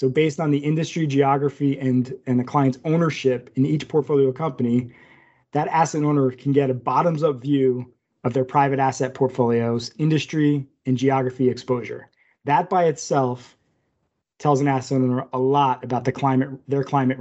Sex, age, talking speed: male, 30-49, 160 wpm